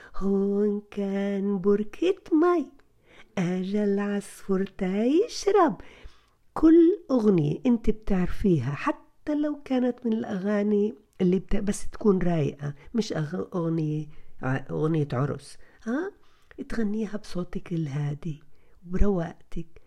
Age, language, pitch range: 50-69, Arabic, 185-290 Hz